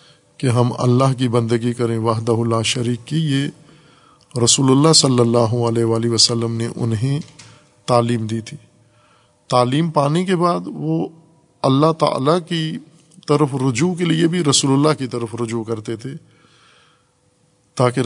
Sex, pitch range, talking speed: male, 120-150 Hz, 145 wpm